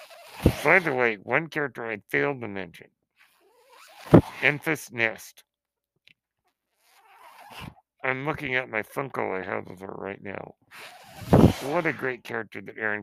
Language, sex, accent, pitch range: English, male, American, 105-145 Hz